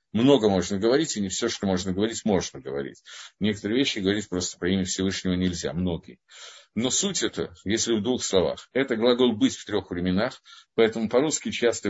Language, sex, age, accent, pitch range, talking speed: Russian, male, 50-69, native, 95-115 Hz, 180 wpm